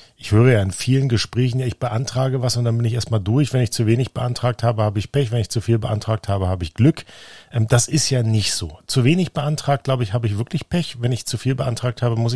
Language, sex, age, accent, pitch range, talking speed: German, male, 40-59, German, 105-125 Hz, 265 wpm